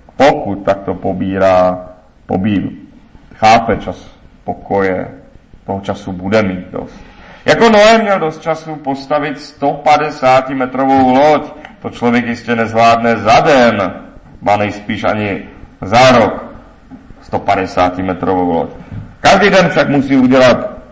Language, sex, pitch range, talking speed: Czech, male, 100-150 Hz, 110 wpm